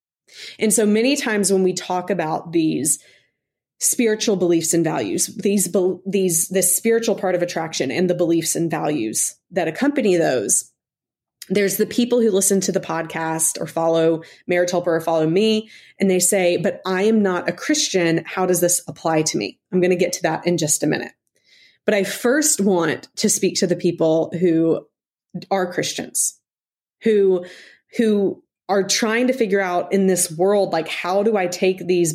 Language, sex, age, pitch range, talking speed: English, female, 20-39, 175-215 Hz, 180 wpm